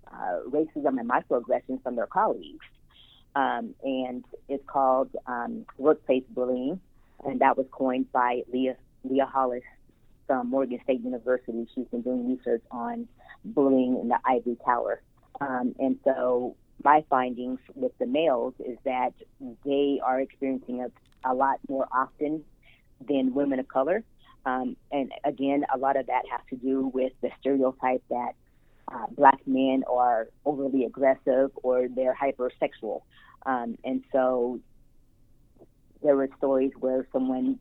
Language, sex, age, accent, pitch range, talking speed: English, female, 30-49, American, 125-140 Hz, 145 wpm